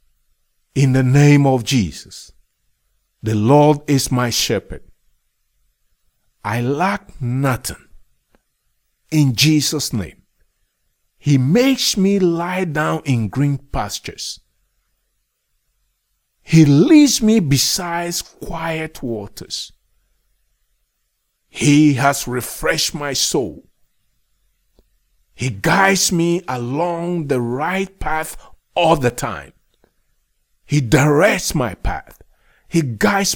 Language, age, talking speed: English, 50-69, 90 wpm